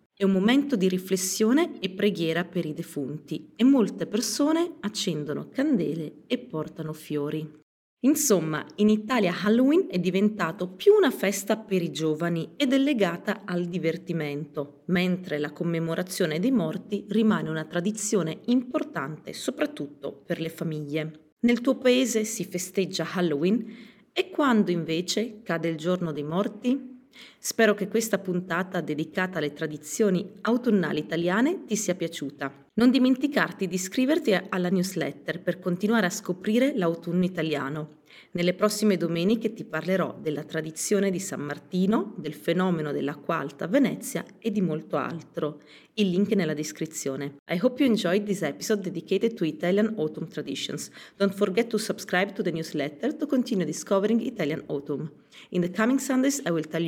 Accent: native